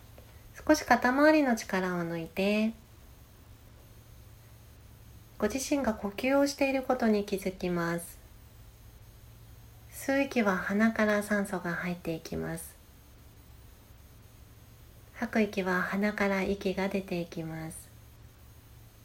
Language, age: Japanese, 40-59